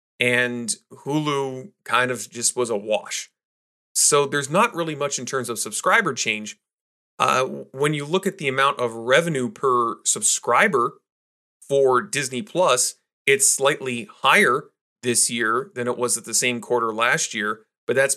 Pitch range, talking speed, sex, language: 120-150 Hz, 160 wpm, male, English